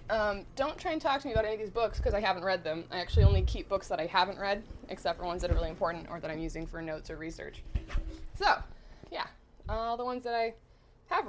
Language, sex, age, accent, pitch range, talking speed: English, female, 20-39, American, 165-230 Hz, 260 wpm